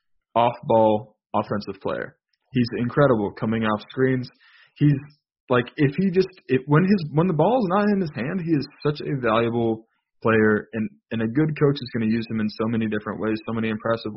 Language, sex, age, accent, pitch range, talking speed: English, male, 20-39, American, 110-125 Hz, 205 wpm